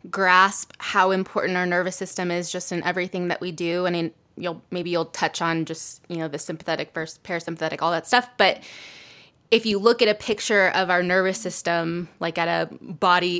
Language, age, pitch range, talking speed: English, 20-39, 170-195 Hz, 195 wpm